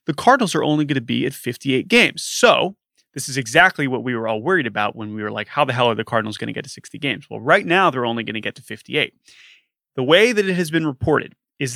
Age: 30-49